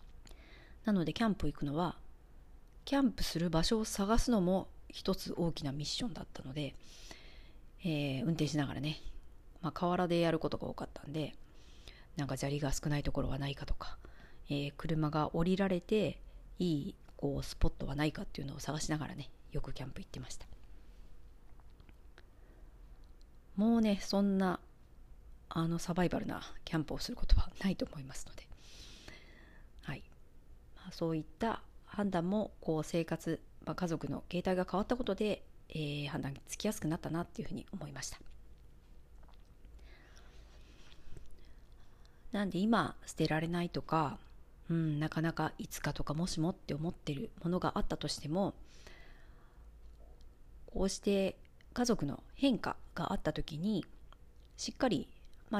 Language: Japanese